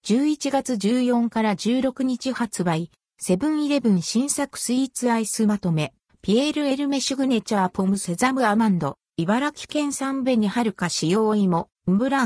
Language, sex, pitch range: Japanese, female, 185-260 Hz